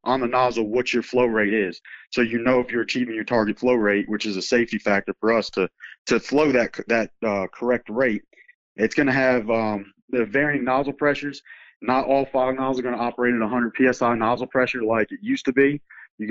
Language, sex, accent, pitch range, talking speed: English, male, American, 115-135 Hz, 215 wpm